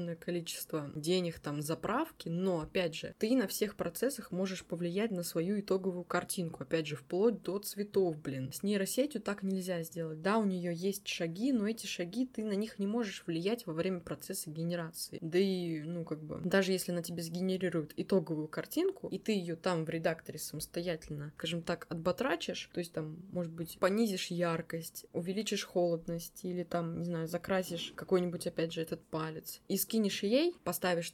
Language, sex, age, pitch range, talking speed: Russian, female, 20-39, 175-235 Hz, 175 wpm